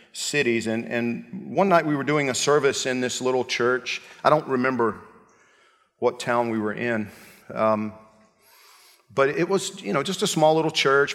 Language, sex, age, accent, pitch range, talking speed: English, male, 50-69, American, 115-150 Hz, 180 wpm